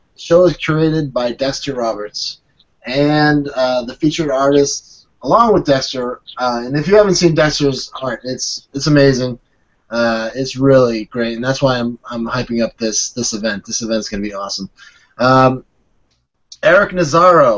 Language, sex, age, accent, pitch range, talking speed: English, male, 20-39, American, 120-175 Hz, 165 wpm